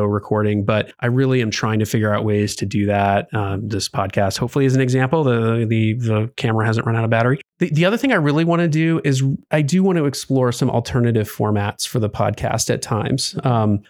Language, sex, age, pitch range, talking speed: English, male, 30-49, 110-140 Hz, 230 wpm